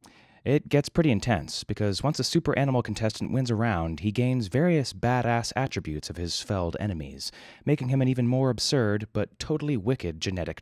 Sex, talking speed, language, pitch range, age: male, 180 wpm, English, 90-135 Hz, 30-49